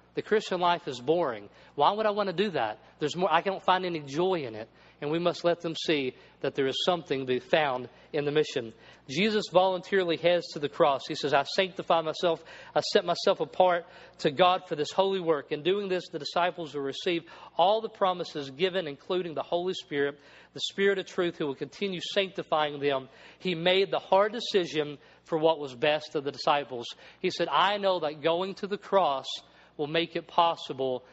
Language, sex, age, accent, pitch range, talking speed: English, male, 40-59, American, 150-185 Hz, 205 wpm